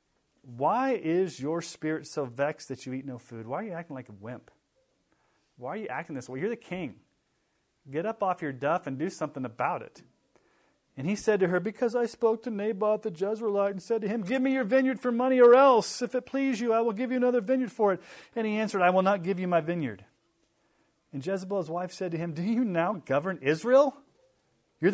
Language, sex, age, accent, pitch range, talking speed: English, male, 40-59, American, 145-225 Hz, 230 wpm